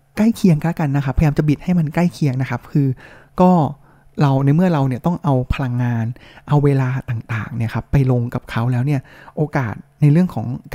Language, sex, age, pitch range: Thai, male, 20-39, 130-165 Hz